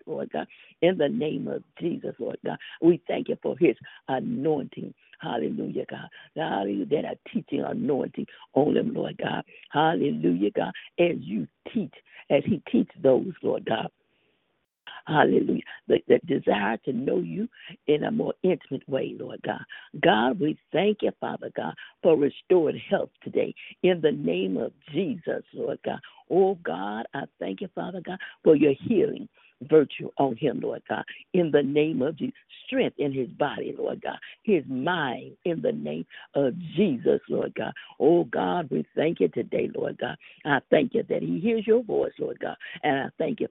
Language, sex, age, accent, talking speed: English, female, 60-79, American, 170 wpm